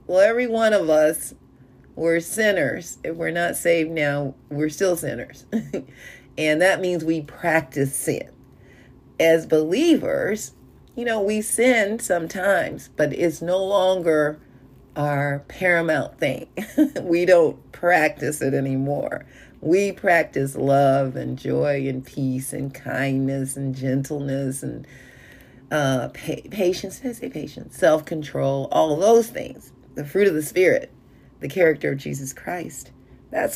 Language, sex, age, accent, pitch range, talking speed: English, female, 40-59, American, 135-185 Hz, 130 wpm